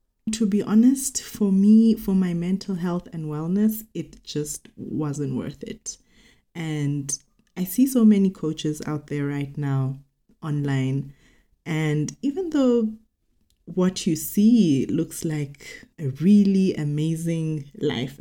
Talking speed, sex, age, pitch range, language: 130 wpm, female, 20-39, 145-195 Hz, English